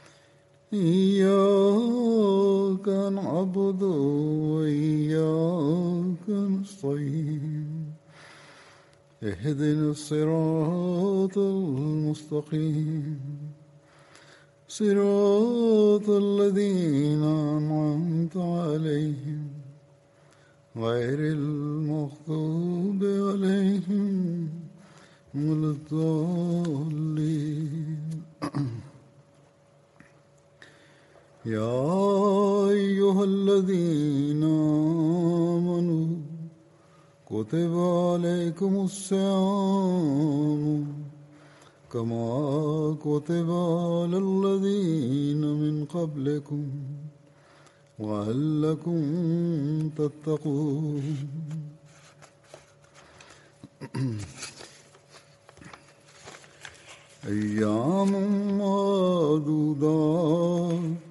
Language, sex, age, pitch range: English, male, 60-79, 145-180 Hz